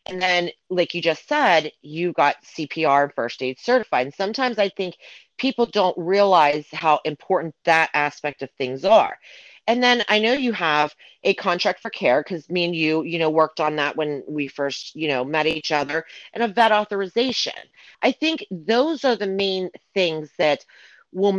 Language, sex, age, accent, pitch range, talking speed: English, female, 40-59, American, 155-205 Hz, 185 wpm